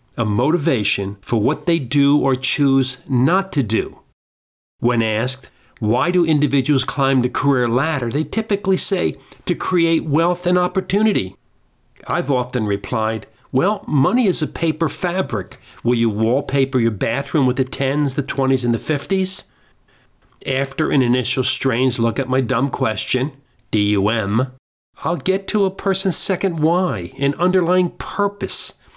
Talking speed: 145 wpm